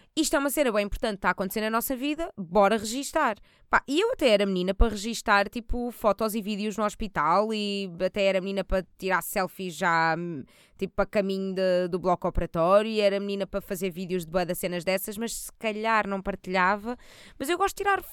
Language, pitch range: Portuguese, 180-240 Hz